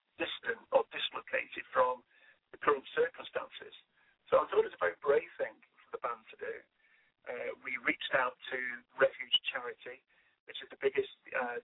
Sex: male